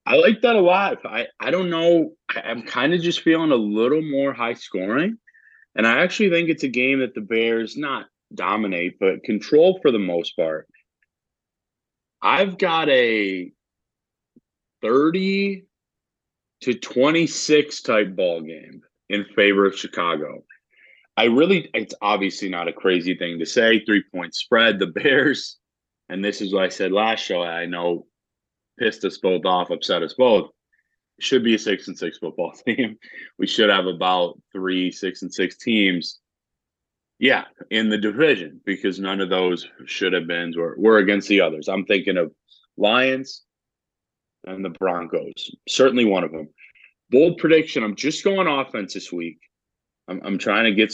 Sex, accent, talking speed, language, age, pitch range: male, American, 165 wpm, English, 30-49, 90-150 Hz